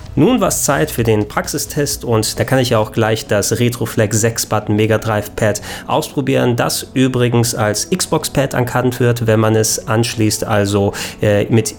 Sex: male